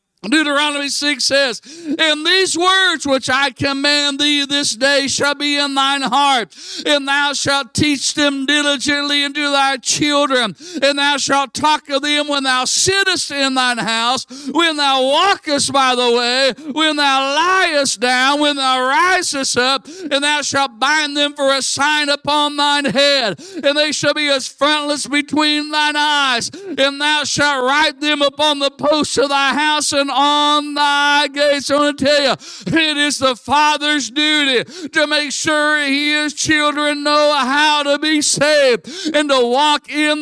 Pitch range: 280-315 Hz